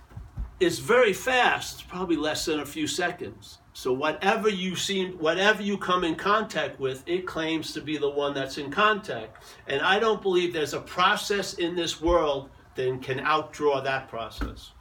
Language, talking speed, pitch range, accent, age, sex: English, 180 wpm, 135-185 Hz, American, 60-79, male